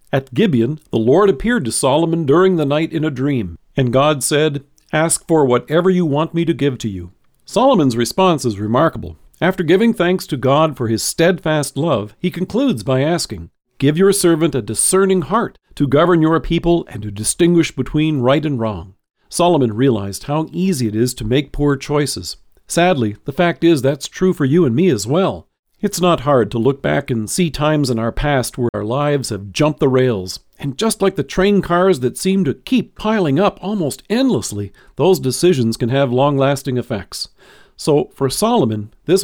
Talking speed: 190 wpm